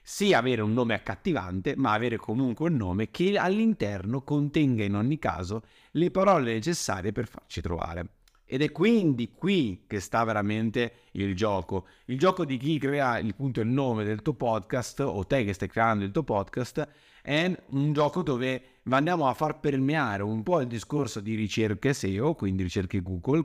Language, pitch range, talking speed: Italian, 105-150 Hz, 180 wpm